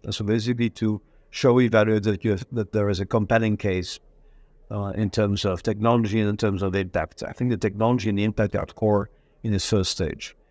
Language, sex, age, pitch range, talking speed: English, male, 50-69, 100-120 Hz, 225 wpm